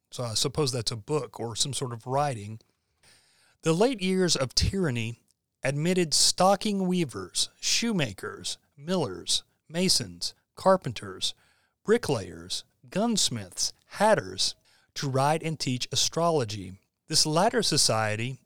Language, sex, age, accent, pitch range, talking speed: English, male, 40-59, American, 120-165 Hz, 110 wpm